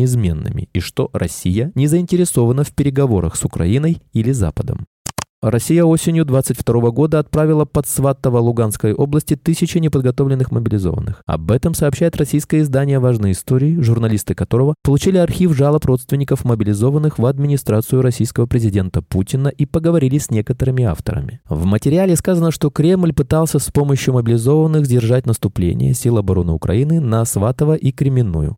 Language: Russian